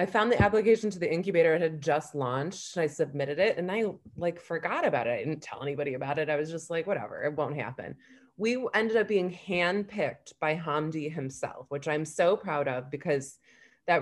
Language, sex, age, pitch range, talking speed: English, female, 20-39, 145-180 Hz, 210 wpm